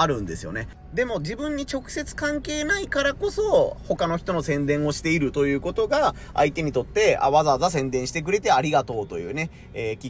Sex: male